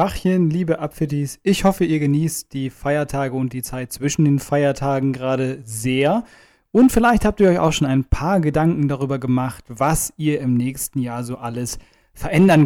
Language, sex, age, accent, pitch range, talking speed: German, male, 30-49, German, 140-180 Hz, 170 wpm